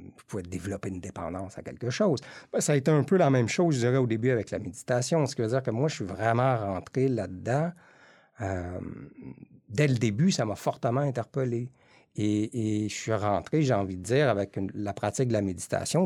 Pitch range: 95-130 Hz